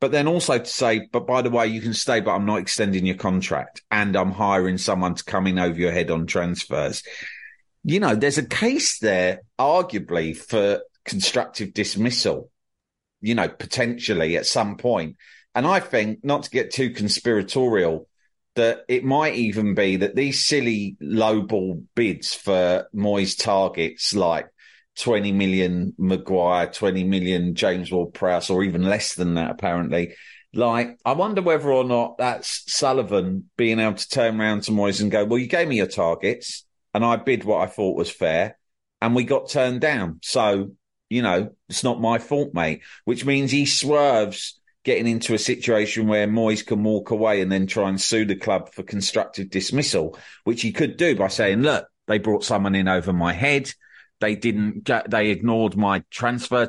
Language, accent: English, British